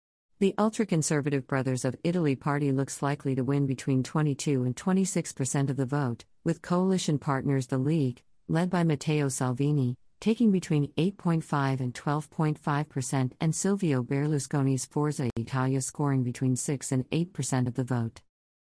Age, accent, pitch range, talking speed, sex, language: 50-69, American, 130-160 Hz, 150 wpm, female, English